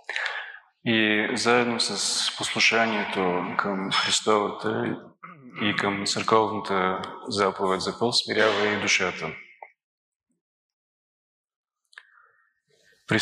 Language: Bulgarian